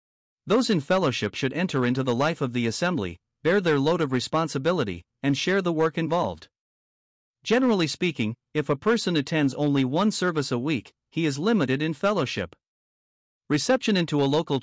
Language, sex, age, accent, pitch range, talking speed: English, male, 50-69, American, 130-175 Hz, 170 wpm